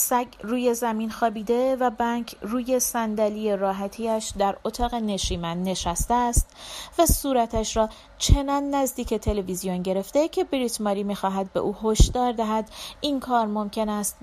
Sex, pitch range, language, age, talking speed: female, 195-250 Hz, Persian, 30-49, 135 wpm